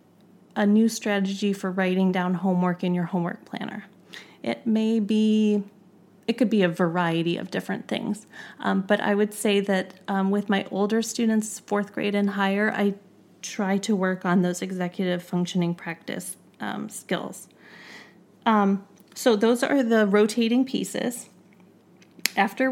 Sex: female